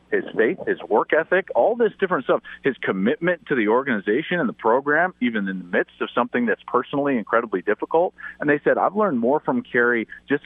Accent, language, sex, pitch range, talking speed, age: American, English, male, 110-175 Hz, 205 wpm, 40-59